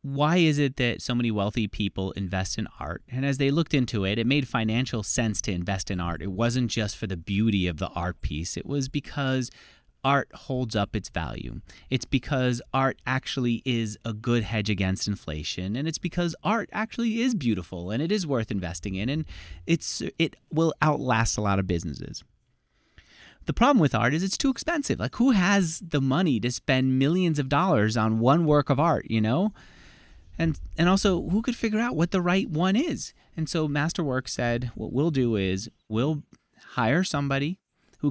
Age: 30-49